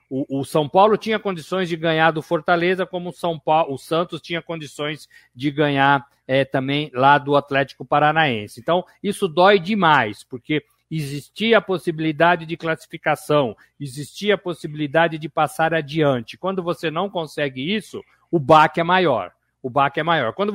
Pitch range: 145-185 Hz